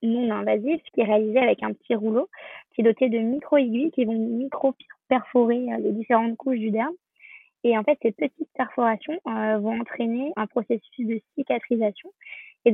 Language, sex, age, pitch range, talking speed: French, female, 20-39, 220-265 Hz, 170 wpm